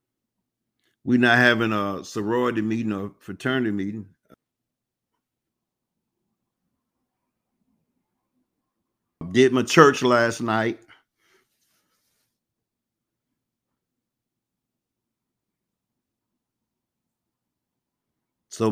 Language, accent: English, American